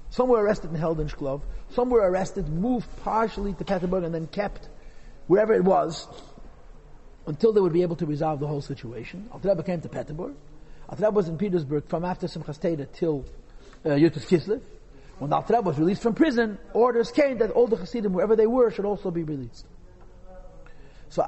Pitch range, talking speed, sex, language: 150-205 Hz, 185 wpm, male, English